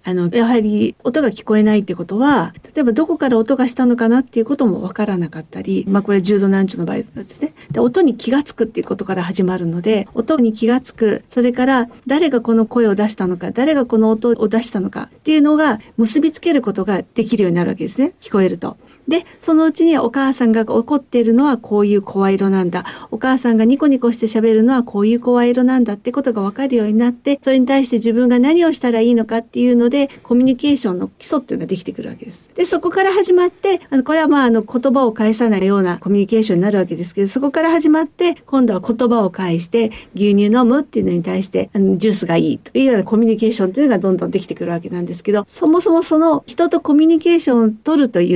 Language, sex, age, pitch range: Japanese, female, 50-69, 210-275 Hz